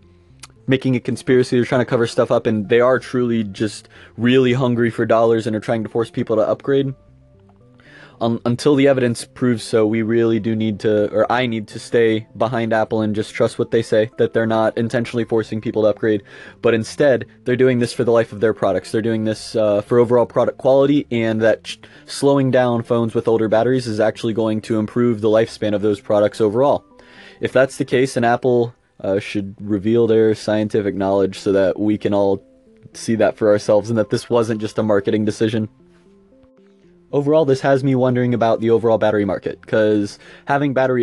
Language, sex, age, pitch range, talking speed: English, male, 20-39, 110-130 Hz, 200 wpm